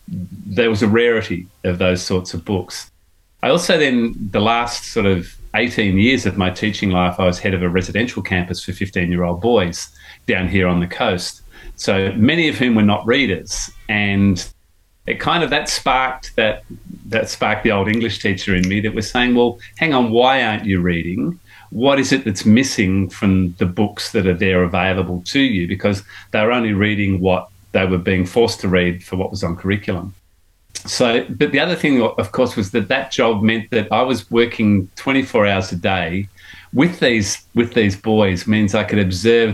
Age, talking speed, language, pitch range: 40-59, 200 wpm, English, 90-110 Hz